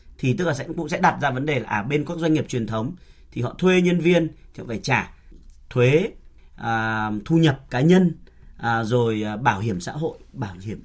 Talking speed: 225 wpm